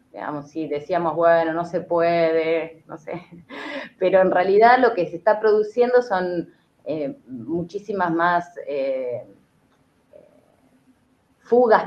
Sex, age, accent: female, 20-39, Argentinian